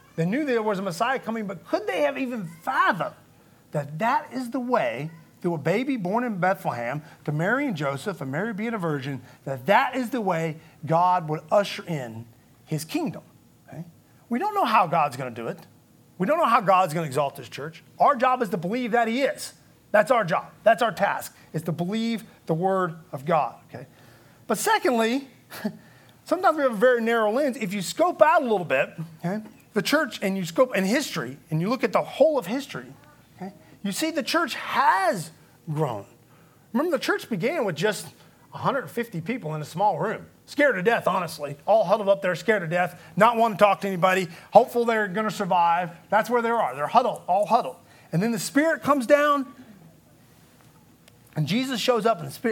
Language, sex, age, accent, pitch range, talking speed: English, male, 30-49, American, 160-240 Hz, 200 wpm